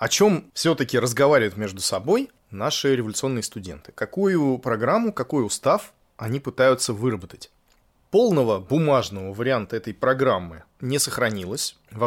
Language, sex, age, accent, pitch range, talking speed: Russian, male, 20-39, native, 115-145 Hz, 120 wpm